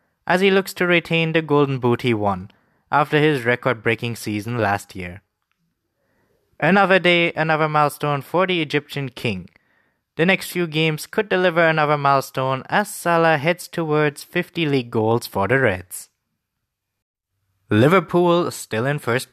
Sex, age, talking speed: male, 20-39, 145 wpm